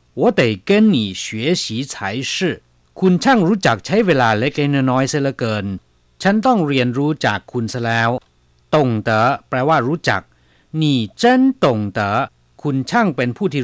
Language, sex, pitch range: Chinese, male, 100-160 Hz